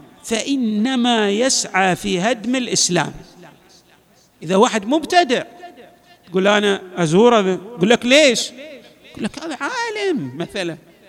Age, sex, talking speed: 50-69, male, 95 wpm